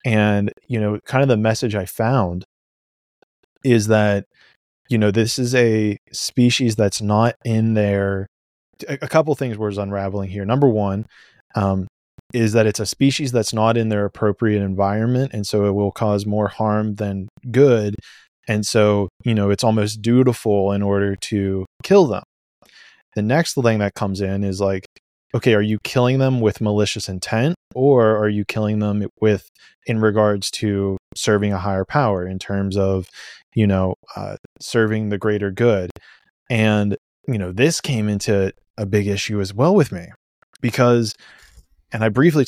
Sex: male